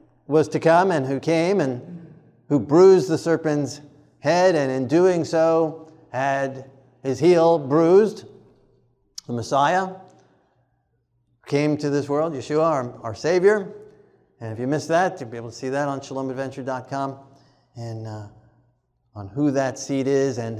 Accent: American